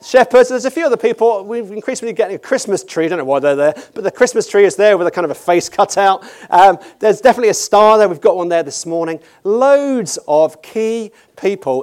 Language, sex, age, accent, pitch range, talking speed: English, male, 40-59, British, 165-230 Hz, 245 wpm